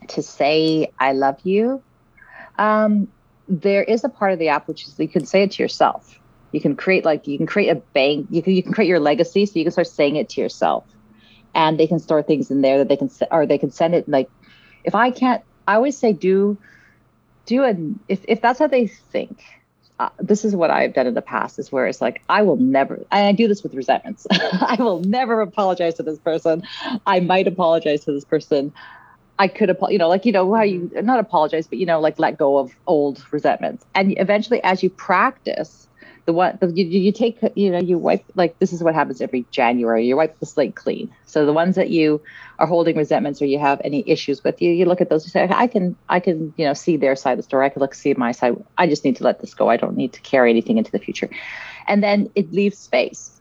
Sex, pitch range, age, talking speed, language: female, 150-200 Hz, 40-59, 245 wpm, English